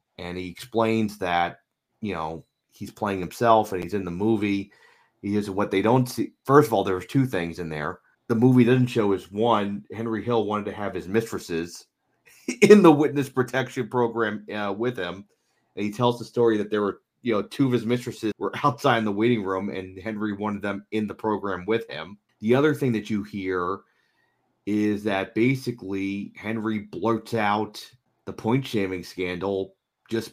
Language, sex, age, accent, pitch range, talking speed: English, male, 30-49, American, 100-115 Hz, 190 wpm